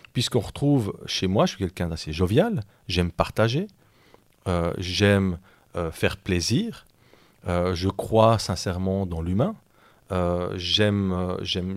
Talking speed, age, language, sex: 125 wpm, 40-59, French, male